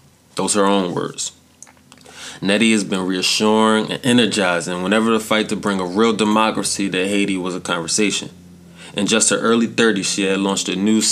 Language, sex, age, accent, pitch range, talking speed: English, male, 20-39, American, 90-105 Hz, 185 wpm